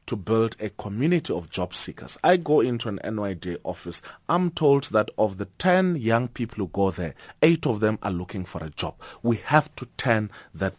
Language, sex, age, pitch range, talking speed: English, male, 30-49, 100-140 Hz, 205 wpm